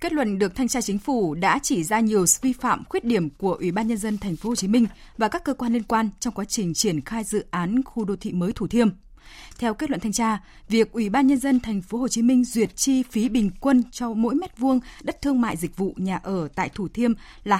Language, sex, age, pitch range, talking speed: Vietnamese, female, 20-39, 185-245 Hz, 270 wpm